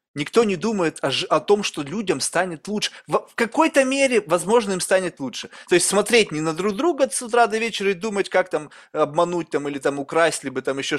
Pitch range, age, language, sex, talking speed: 160-225 Hz, 20-39, Russian, male, 230 wpm